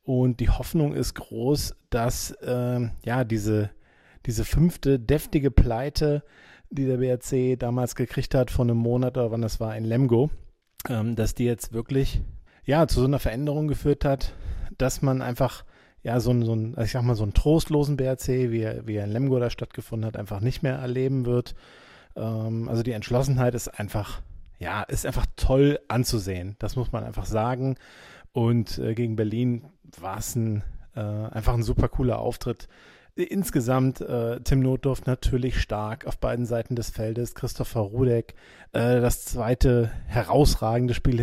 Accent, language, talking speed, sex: German, German, 165 wpm, male